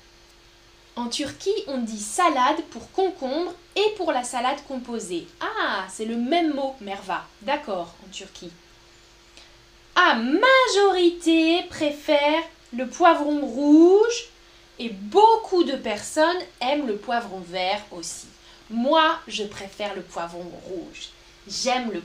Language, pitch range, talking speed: French, 200-325 Hz, 120 wpm